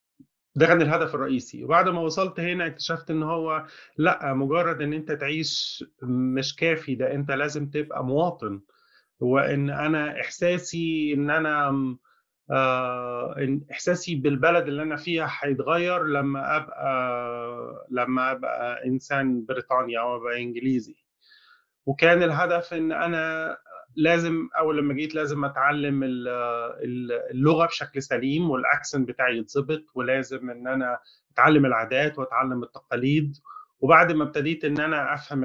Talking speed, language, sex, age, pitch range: 120 wpm, Arabic, male, 30-49, 130-160 Hz